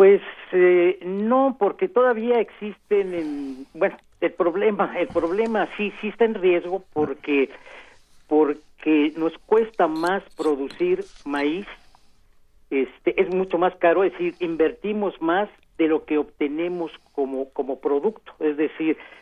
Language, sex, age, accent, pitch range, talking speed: Spanish, male, 50-69, Mexican, 145-185 Hz, 130 wpm